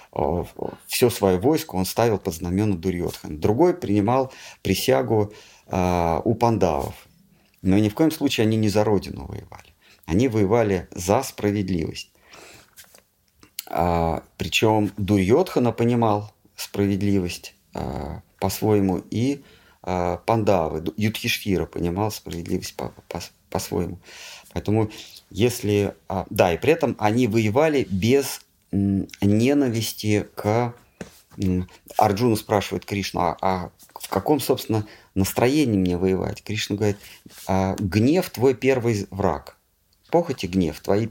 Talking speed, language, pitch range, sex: 110 wpm, Russian, 95-115 Hz, male